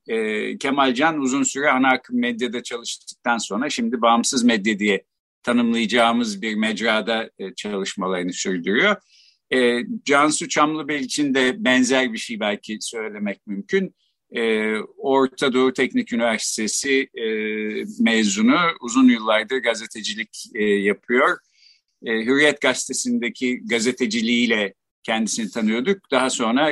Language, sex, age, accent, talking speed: Turkish, male, 50-69, native, 115 wpm